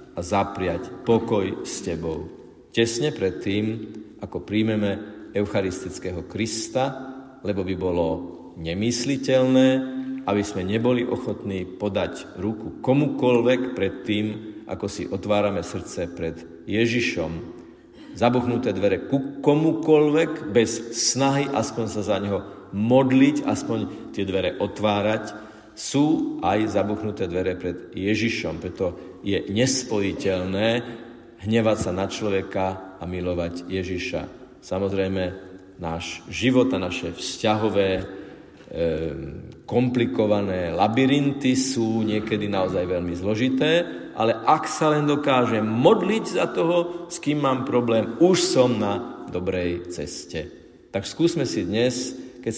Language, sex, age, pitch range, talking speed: Slovak, male, 50-69, 95-130 Hz, 110 wpm